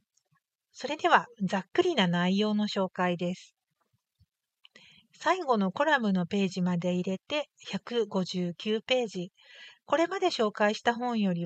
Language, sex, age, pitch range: Japanese, female, 50-69, 185-240 Hz